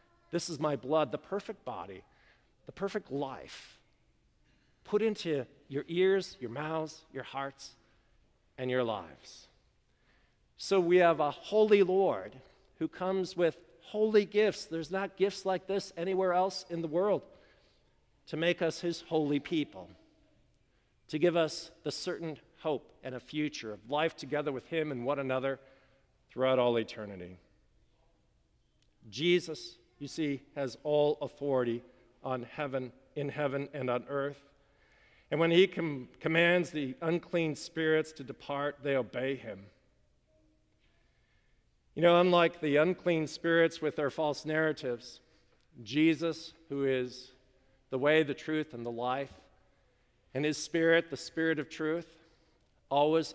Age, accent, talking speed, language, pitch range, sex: 50-69, American, 135 wpm, English, 135-165 Hz, male